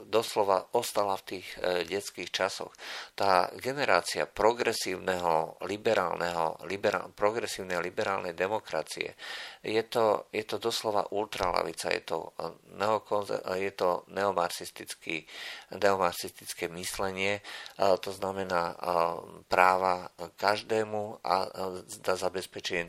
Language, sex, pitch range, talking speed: Slovak, male, 90-110 Hz, 80 wpm